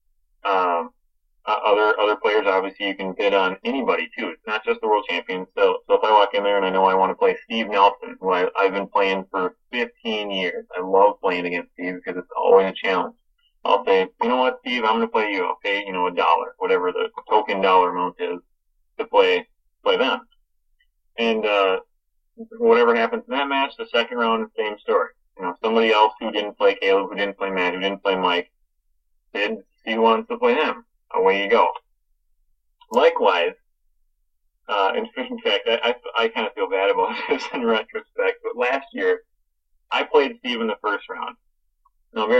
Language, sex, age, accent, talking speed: English, male, 30-49, American, 200 wpm